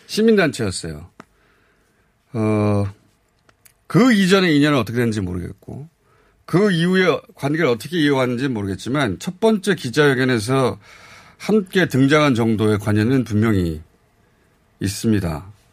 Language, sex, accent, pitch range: Korean, male, native, 110-160 Hz